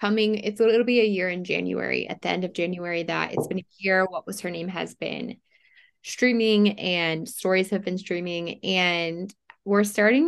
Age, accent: 20-39, American